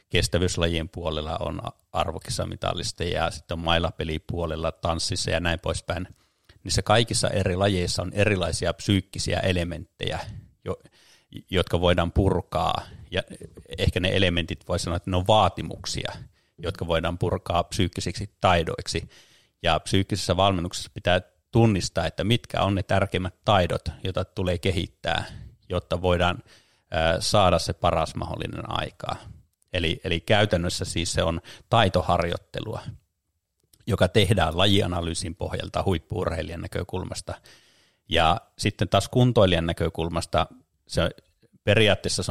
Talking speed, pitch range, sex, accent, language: 115 wpm, 85-100 Hz, male, native, Finnish